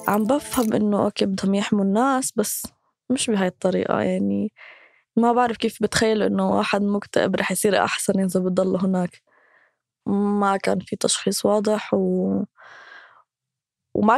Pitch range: 200-245 Hz